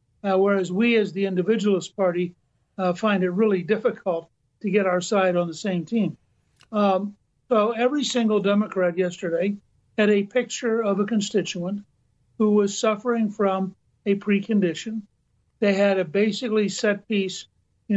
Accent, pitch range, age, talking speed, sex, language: American, 180-210 Hz, 60-79, 150 wpm, male, English